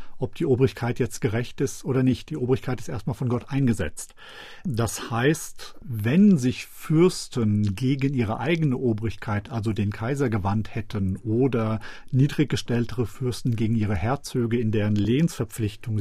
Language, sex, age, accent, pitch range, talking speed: German, male, 40-59, German, 110-130 Hz, 140 wpm